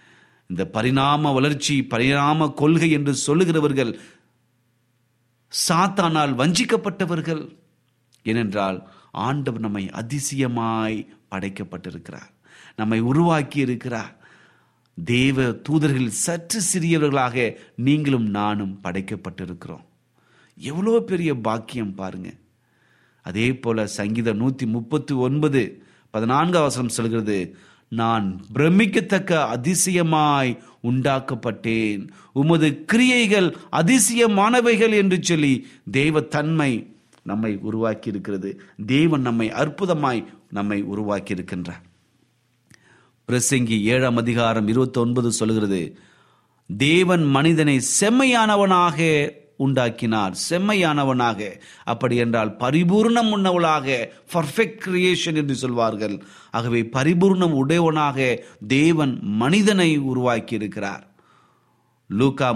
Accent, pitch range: native, 115-155 Hz